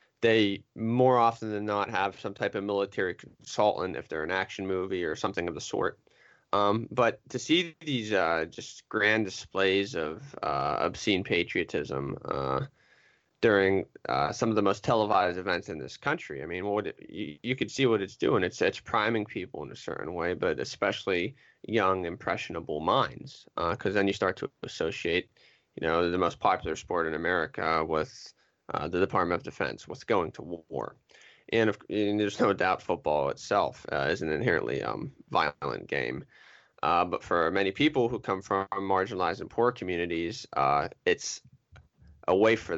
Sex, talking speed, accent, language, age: male, 180 wpm, American, English, 20-39